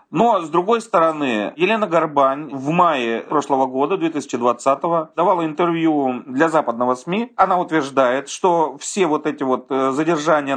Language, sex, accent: Russian, male, native